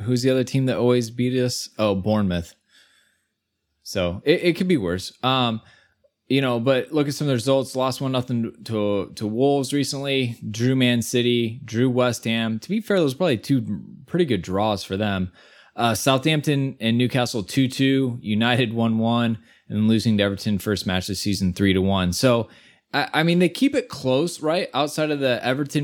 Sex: male